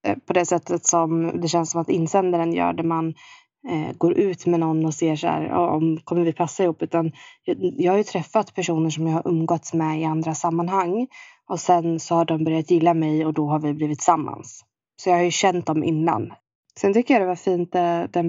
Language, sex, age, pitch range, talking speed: Swedish, female, 20-39, 165-185 Hz, 230 wpm